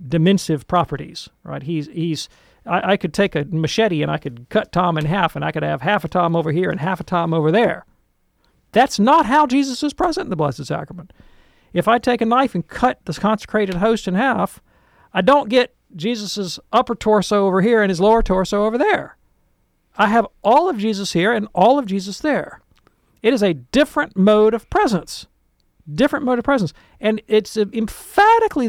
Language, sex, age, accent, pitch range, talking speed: English, male, 50-69, American, 170-235 Hz, 195 wpm